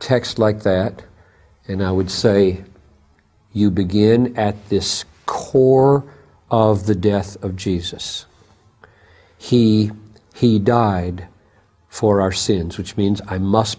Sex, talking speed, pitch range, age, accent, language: male, 120 wpm, 100-120 Hz, 50-69, American, English